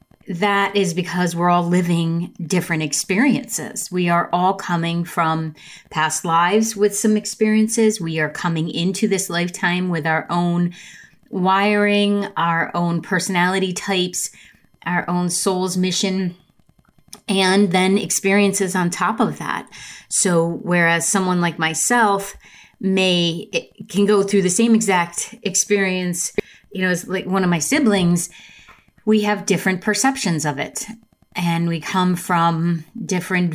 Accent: American